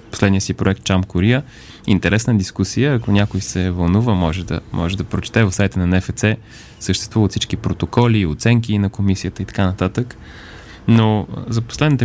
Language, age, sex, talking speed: Bulgarian, 20-39, male, 160 wpm